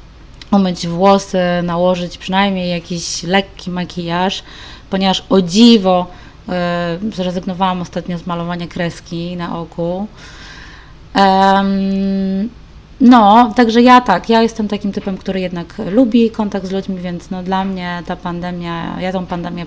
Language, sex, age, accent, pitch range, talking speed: Polish, female, 20-39, native, 170-205 Hz, 130 wpm